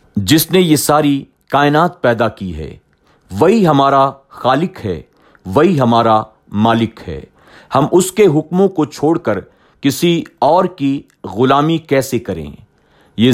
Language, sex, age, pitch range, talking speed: Urdu, male, 50-69, 115-145 Hz, 135 wpm